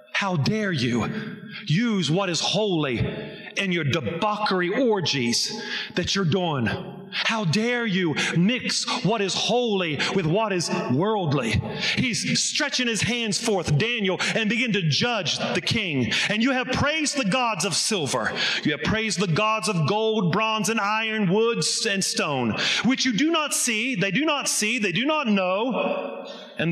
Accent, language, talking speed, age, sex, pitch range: American, English, 160 wpm, 40-59, male, 175-235 Hz